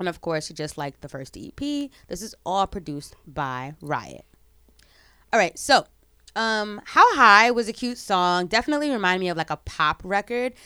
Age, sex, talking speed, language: 20-39, female, 180 wpm, English